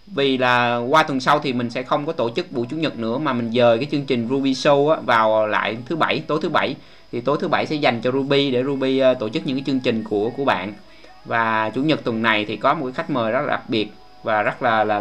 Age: 20-39